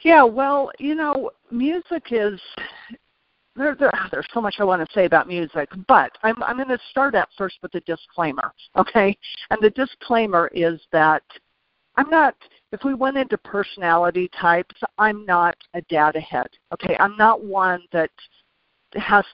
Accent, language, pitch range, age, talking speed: American, English, 170-220 Hz, 50-69, 165 wpm